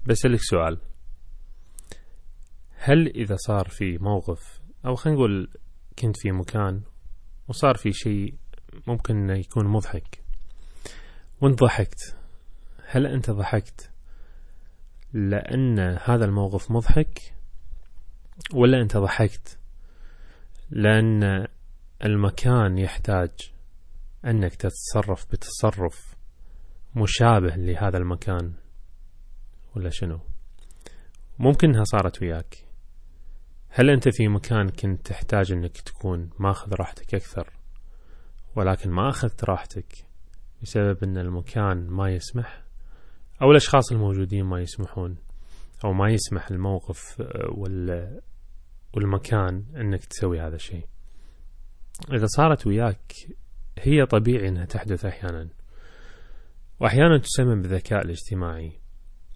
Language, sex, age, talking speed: Arabic, male, 20-39, 90 wpm